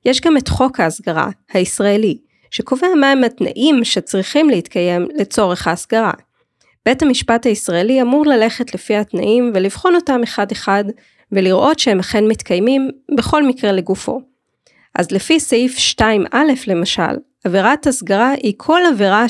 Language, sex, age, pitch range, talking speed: Hebrew, female, 20-39, 195-265 Hz, 130 wpm